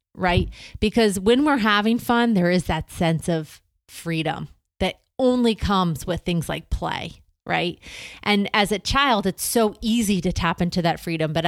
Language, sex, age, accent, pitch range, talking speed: English, female, 30-49, American, 170-205 Hz, 175 wpm